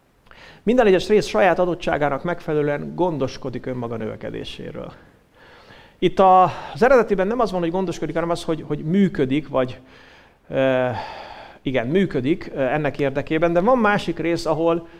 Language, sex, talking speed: English, male, 130 wpm